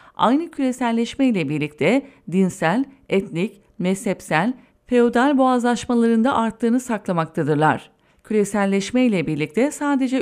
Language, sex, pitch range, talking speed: English, female, 185-250 Hz, 90 wpm